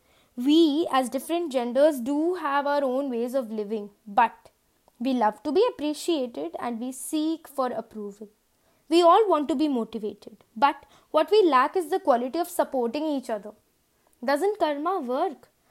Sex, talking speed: female, 160 wpm